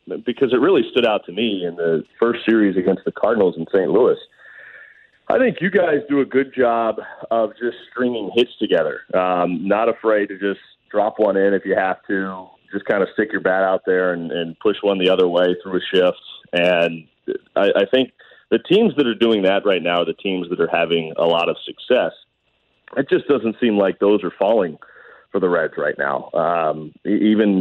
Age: 30-49